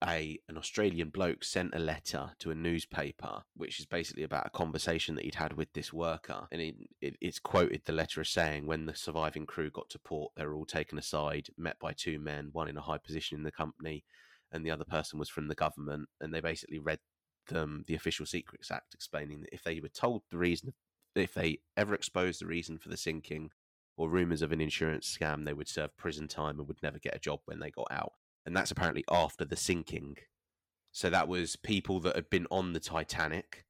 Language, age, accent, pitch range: English, 20-39, British, 75-85 Hz